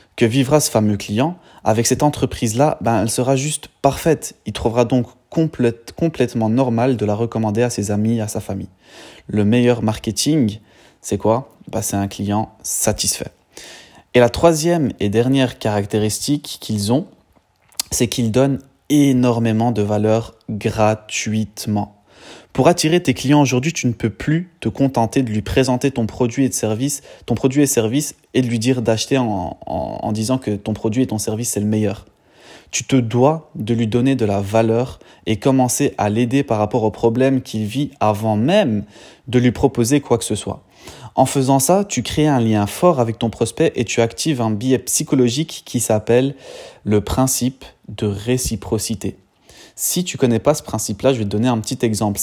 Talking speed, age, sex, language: 175 wpm, 20-39, male, French